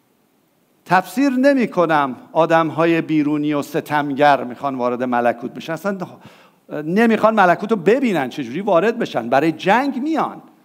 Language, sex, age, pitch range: English, male, 50-69, 155-225 Hz